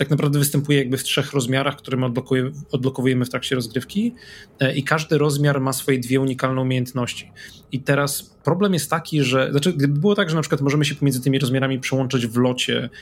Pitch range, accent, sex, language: 130-150 Hz, native, male, Polish